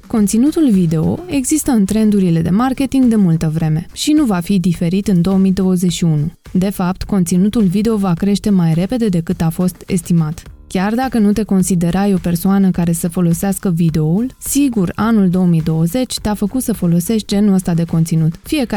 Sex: female